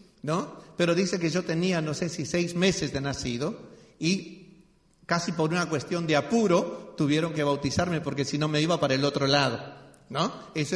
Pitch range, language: 155-210 Hz, Spanish